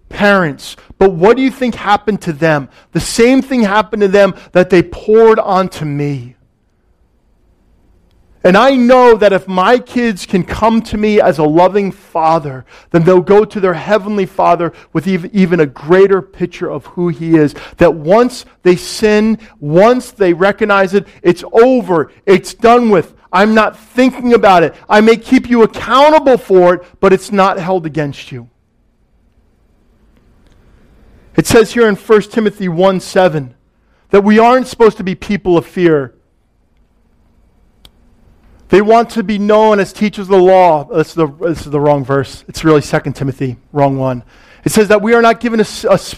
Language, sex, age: English, male, 40-59